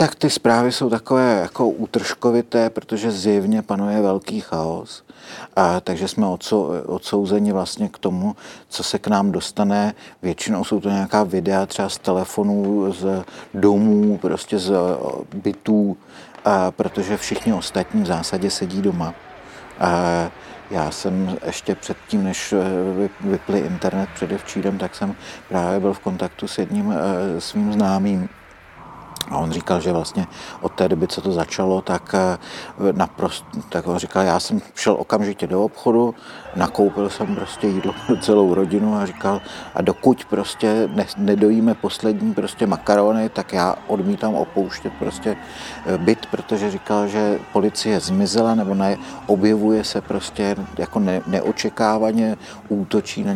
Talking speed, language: 135 wpm, Czech